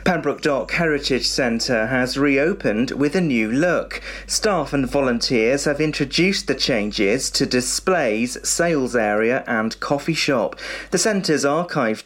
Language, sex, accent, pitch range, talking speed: English, male, British, 125-160 Hz, 135 wpm